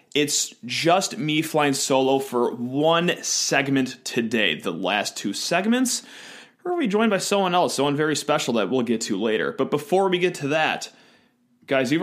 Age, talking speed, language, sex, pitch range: 30-49, 180 wpm, English, male, 130-185 Hz